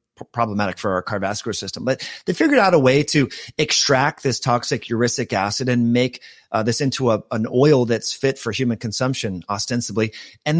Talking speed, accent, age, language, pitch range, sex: 175 wpm, American, 30-49, English, 115-145 Hz, male